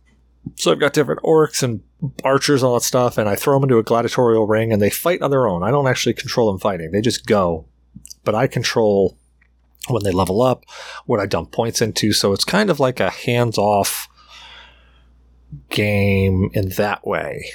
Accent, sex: American, male